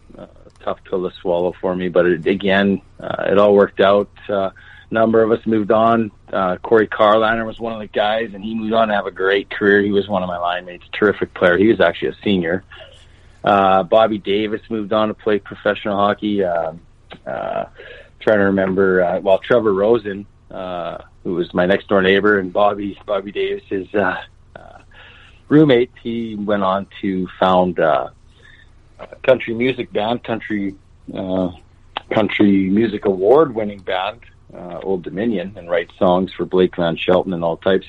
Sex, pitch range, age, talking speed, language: male, 95-115 Hz, 40-59, 180 wpm, English